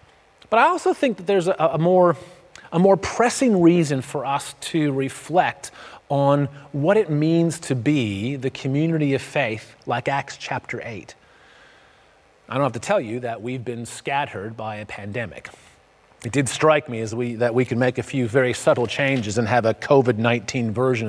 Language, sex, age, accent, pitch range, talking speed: English, male, 30-49, American, 120-165 Hz, 180 wpm